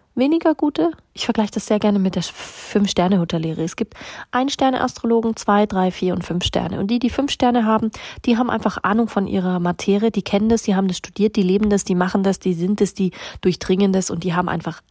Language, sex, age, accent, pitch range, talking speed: German, female, 30-49, German, 175-205 Hz, 230 wpm